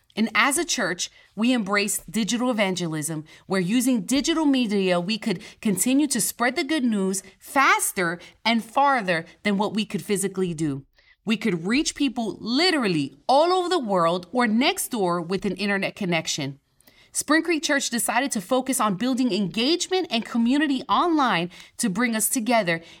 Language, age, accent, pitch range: English, 30-49, American, 195-275 Hz